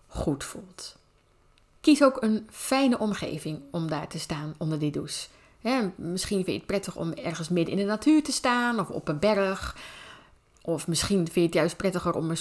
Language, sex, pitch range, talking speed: Dutch, female, 165-215 Hz, 195 wpm